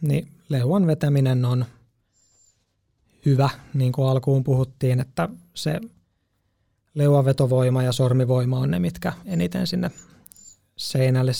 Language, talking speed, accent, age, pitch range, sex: Finnish, 110 wpm, native, 20-39, 125-155 Hz, male